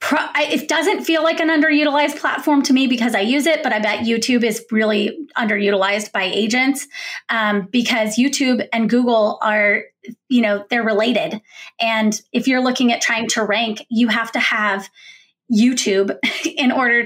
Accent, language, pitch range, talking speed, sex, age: American, English, 215-255 Hz, 165 wpm, female, 20-39